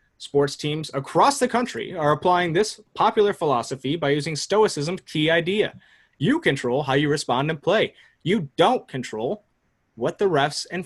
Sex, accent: male, American